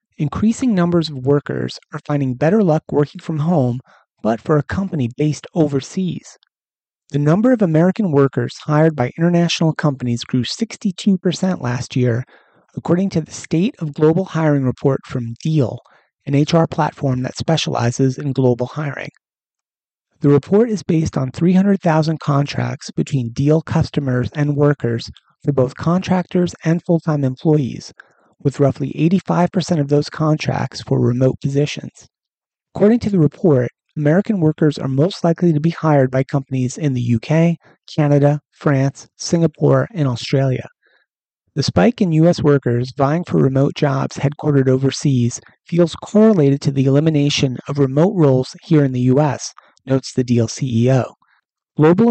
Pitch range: 130-165 Hz